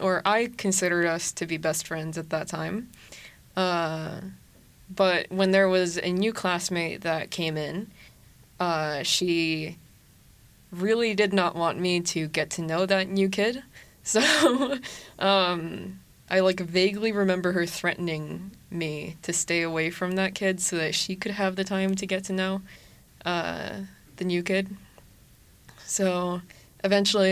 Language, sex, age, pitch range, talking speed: Swedish, female, 20-39, 165-195 Hz, 150 wpm